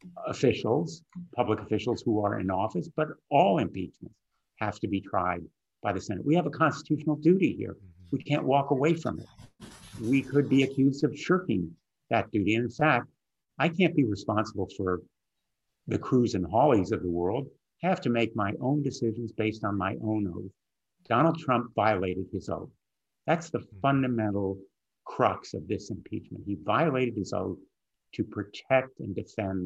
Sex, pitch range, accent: male, 100-135 Hz, American